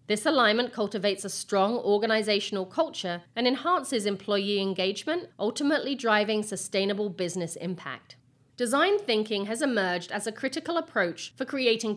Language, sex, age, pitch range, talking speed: English, female, 40-59, 185-240 Hz, 130 wpm